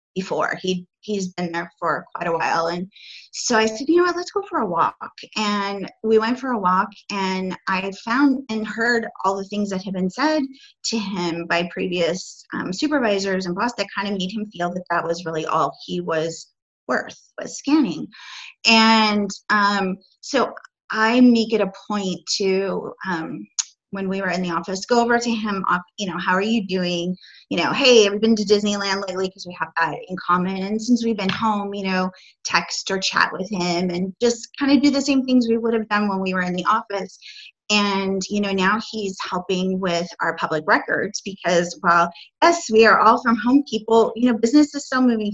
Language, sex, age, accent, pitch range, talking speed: English, female, 30-49, American, 185-225 Hz, 210 wpm